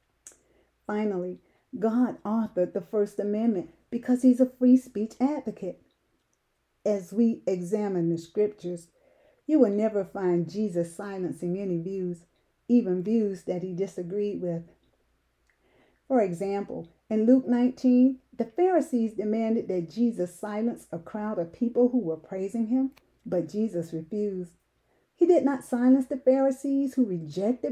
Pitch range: 180-265 Hz